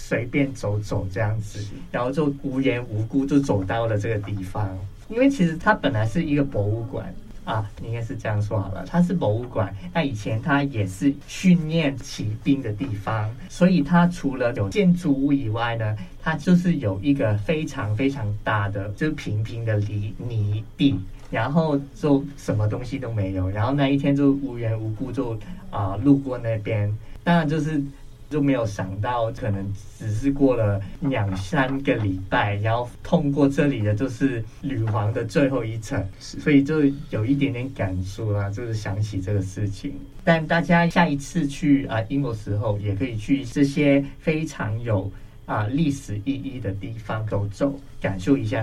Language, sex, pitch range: Chinese, male, 105-140 Hz